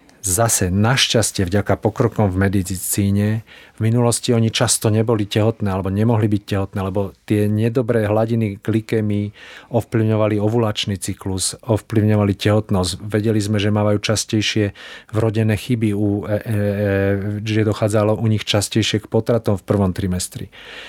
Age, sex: 40-59, male